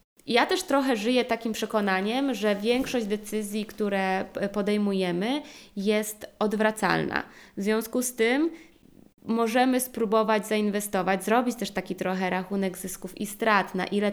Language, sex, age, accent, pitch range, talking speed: Polish, female, 20-39, native, 195-240 Hz, 125 wpm